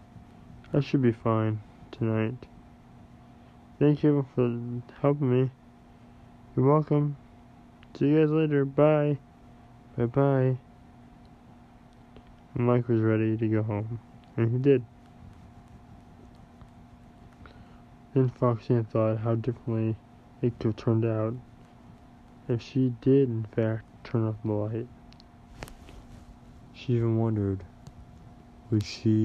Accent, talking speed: American, 105 wpm